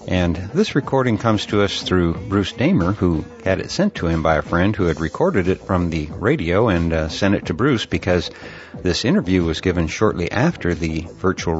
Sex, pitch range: male, 85-105 Hz